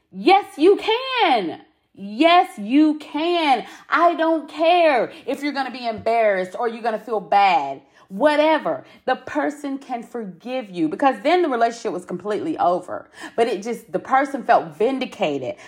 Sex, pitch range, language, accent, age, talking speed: female, 195-305 Hz, English, American, 30-49, 155 wpm